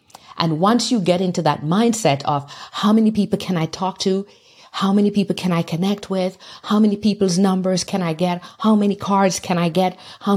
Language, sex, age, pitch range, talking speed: English, female, 50-69, 155-205 Hz, 210 wpm